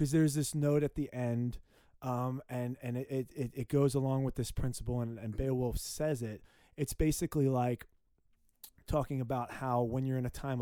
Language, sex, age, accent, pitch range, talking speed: English, male, 30-49, American, 120-140 Hz, 185 wpm